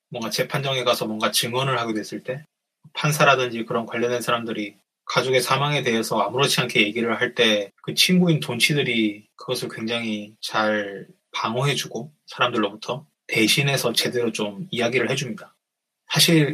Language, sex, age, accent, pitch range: Korean, male, 20-39, native, 110-145 Hz